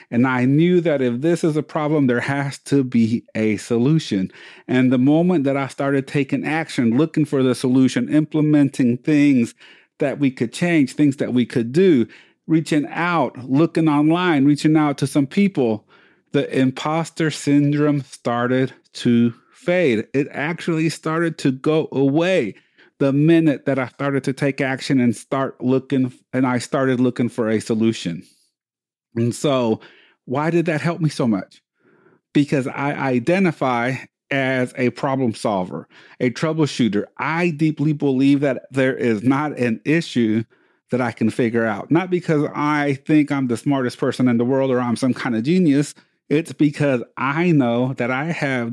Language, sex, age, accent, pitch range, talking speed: English, male, 40-59, American, 125-150 Hz, 165 wpm